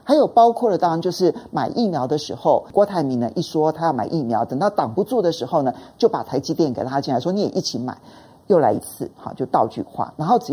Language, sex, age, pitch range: Chinese, male, 50-69, 150-240 Hz